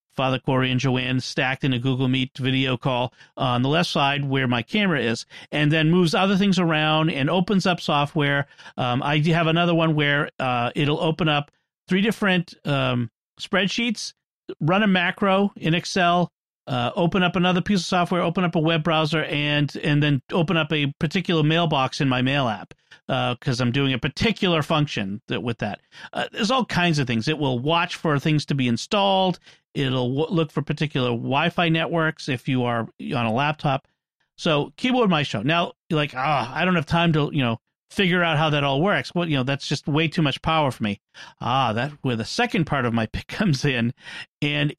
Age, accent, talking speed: 40-59, American, 210 wpm